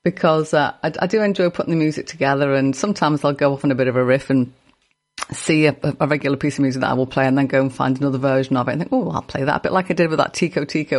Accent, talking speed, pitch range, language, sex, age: British, 310 wpm, 130-165 Hz, English, female, 40-59